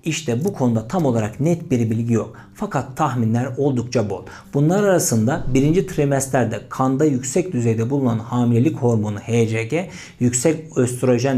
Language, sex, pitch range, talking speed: Turkish, male, 120-165 Hz, 135 wpm